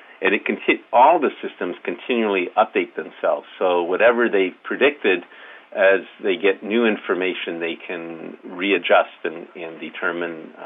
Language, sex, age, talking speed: English, male, 50-69, 140 wpm